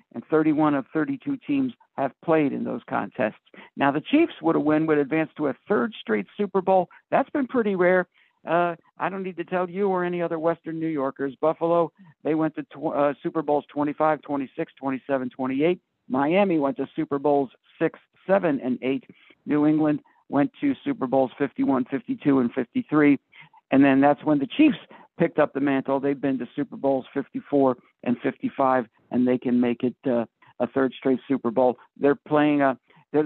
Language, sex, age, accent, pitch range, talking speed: English, male, 60-79, American, 140-175 Hz, 190 wpm